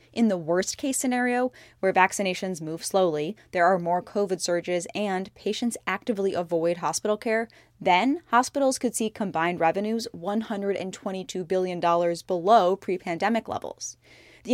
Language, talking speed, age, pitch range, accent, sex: English, 130 wpm, 10-29, 175-230 Hz, American, female